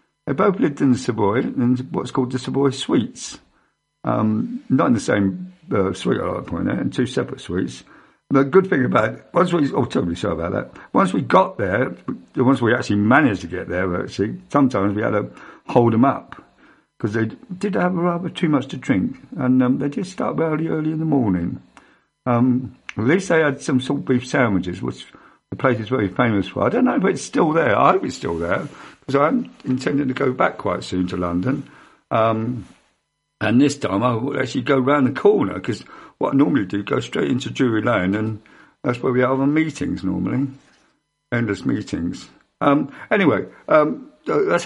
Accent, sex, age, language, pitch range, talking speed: British, male, 50-69, English, 110-150 Hz, 205 wpm